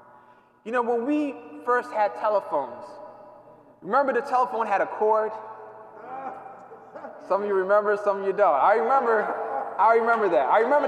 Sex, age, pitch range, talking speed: male, 20-39, 180-230 Hz, 155 wpm